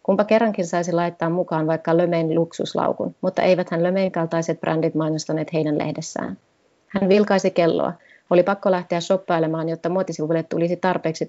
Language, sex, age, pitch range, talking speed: Finnish, female, 30-49, 165-185 Hz, 140 wpm